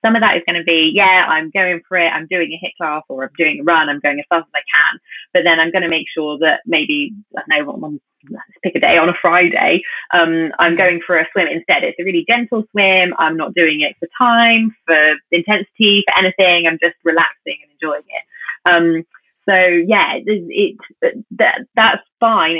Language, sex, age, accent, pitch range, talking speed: English, female, 20-39, British, 160-220 Hz, 225 wpm